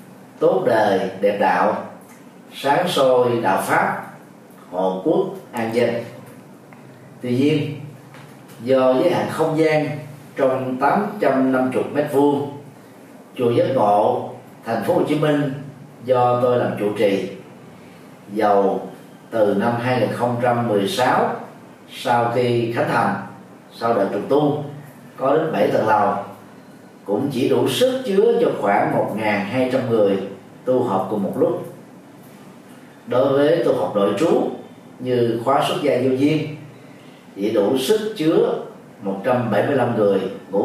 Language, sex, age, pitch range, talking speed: Vietnamese, male, 30-49, 115-145 Hz, 125 wpm